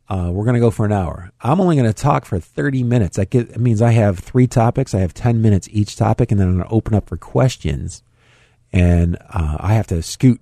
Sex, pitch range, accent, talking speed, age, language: male, 100-125 Hz, American, 260 wpm, 50-69, English